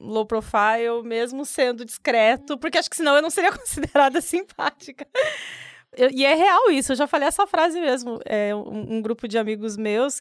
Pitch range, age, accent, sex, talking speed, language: 225-300 Hz, 20-39, Brazilian, female, 175 wpm, Portuguese